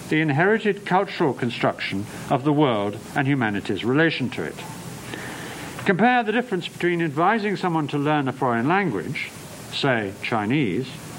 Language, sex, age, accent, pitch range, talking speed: English, male, 60-79, British, 125-170 Hz, 135 wpm